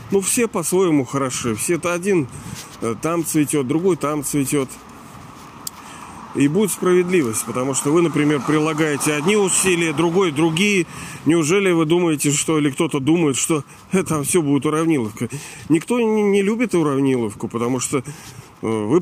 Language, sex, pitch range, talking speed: Russian, male, 125-155 Hz, 135 wpm